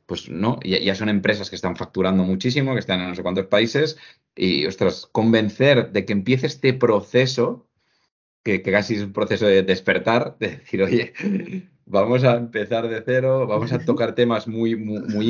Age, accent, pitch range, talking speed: 30-49, Spanish, 95-120 Hz, 185 wpm